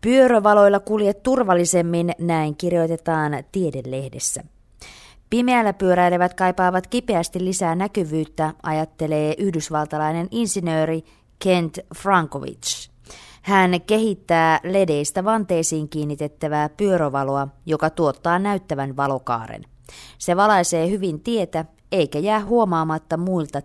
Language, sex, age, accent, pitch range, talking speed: Finnish, female, 20-39, native, 155-190 Hz, 90 wpm